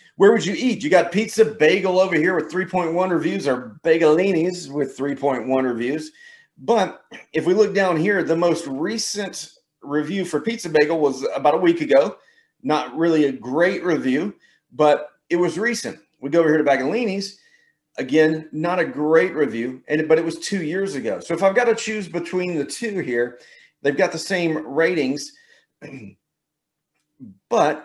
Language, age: English, 40-59